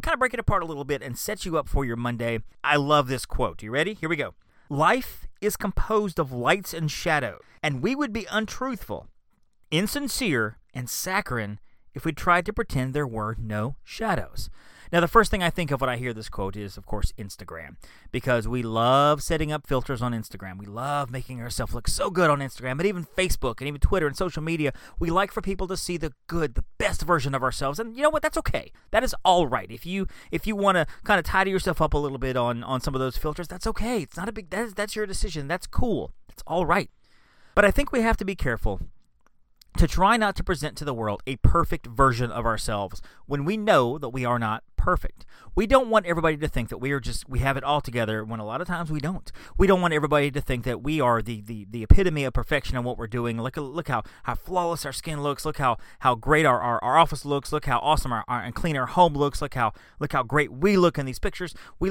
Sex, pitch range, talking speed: male, 120-180 Hz, 245 wpm